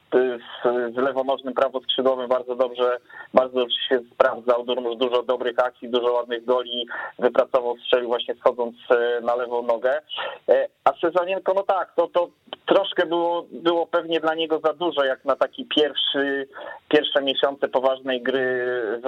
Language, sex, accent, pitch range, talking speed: Polish, male, native, 120-150 Hz, 140 wpm